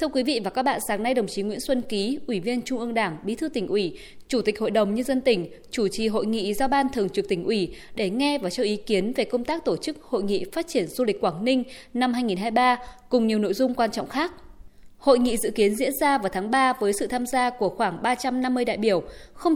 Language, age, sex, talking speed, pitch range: Vietnamese, 20-39, female, 265 wpm, 205-275 Hz